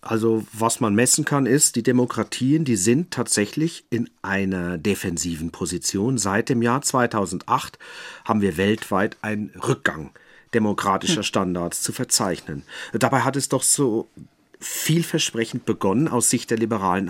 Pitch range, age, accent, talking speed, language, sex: 105-135 Hz, 40-59, German, 135 wpm, German, male